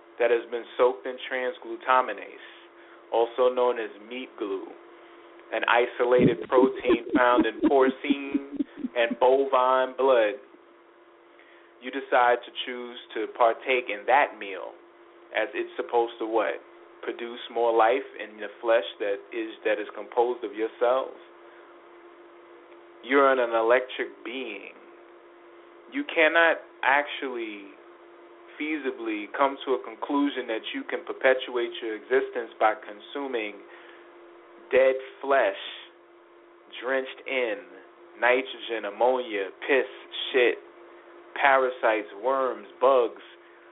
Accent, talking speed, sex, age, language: American, 110 wpm, male, 30-49, English